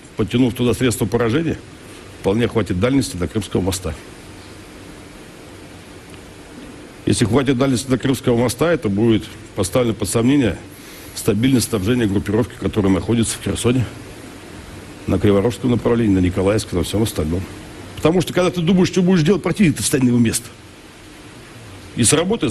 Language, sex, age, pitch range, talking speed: Russian, male, 60-79, 95-125 Hz, 140 wpm